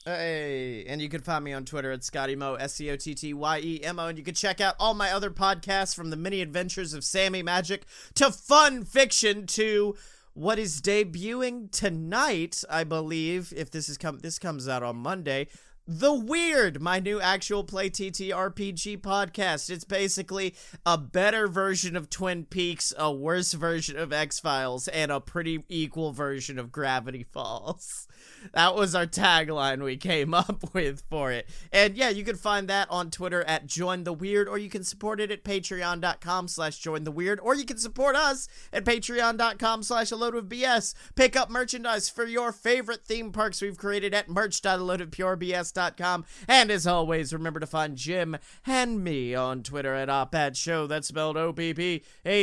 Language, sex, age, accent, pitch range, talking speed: English, male, 30-49, American, 160-210 Hz, 170 wpm